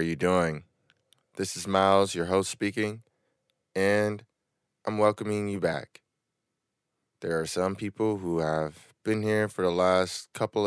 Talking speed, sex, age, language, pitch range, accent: 145 wpm, male, 20-39, English, 85-110 Hz, American